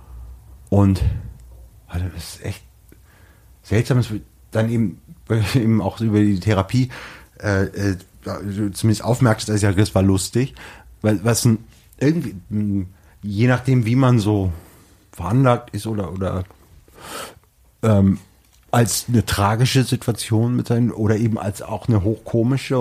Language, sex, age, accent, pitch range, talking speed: German, male, 30-49, German, 90-115 Hz, 130 wpm